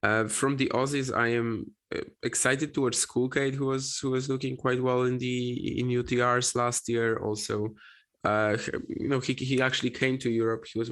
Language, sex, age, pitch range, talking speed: English, male, 20-39, 110-130 Hz, 185 wpm